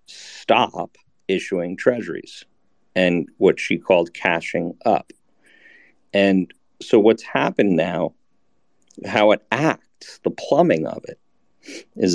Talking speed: 110 wpm